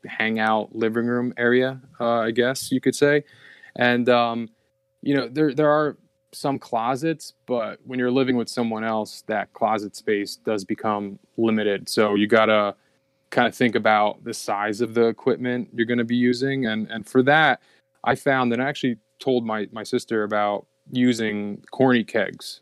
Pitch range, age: 110-135 Hz, 20-39